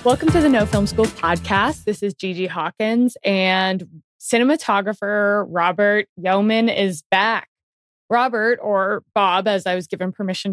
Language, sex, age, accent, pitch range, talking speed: English, female, 20-39, American, 180-215 Hz, 140 wpm